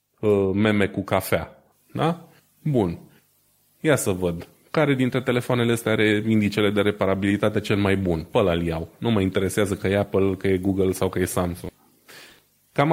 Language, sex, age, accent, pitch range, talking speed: Romanian, male, 20-39, native, 95-125 Hz, 165 wpm